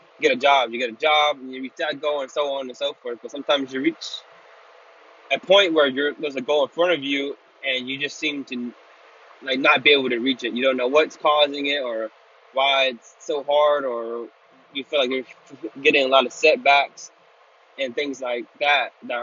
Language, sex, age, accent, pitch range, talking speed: English, male, 20-39, American, 125-150 Hz, 220 wpm